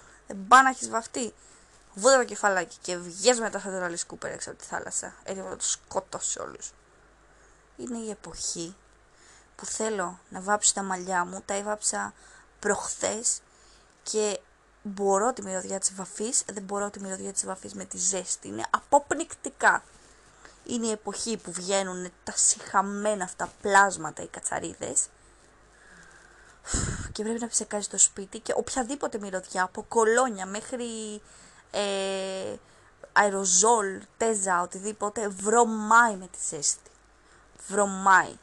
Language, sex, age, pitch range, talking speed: Greek, female, 20-39, 185-220 Hz, 130 wpm